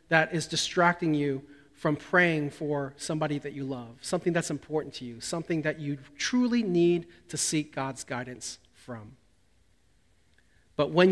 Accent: American